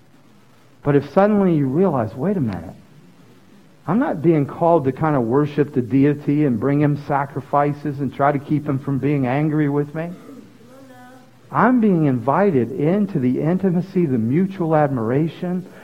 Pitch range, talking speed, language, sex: 140-190 Hz, 155 wpm, English, male